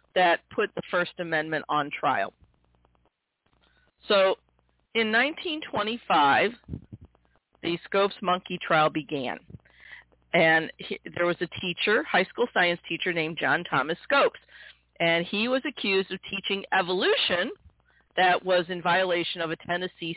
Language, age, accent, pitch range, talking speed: English, 50-69, American, 170-220 Hz, 125 wpm